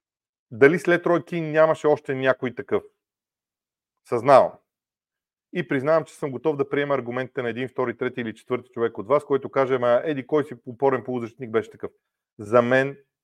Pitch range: 115-140 Hz